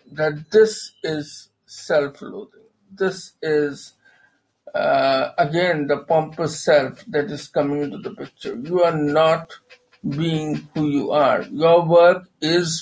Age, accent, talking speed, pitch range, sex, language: 50-69, Indian, 125 wpm, 150-200 Hz, male, English